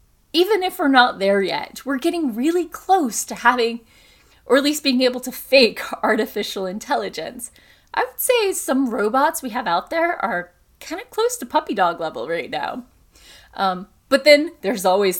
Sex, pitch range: female, 215-310 Hz